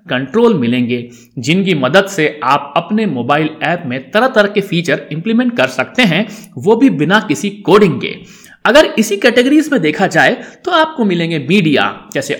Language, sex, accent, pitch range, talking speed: Hindi, male, native, 140-215 Hz, 170 wpm